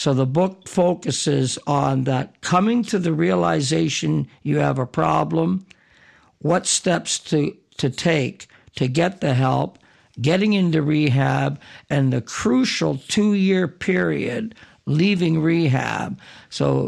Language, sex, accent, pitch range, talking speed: English, male, American, 135-170 Hz, 120 wpm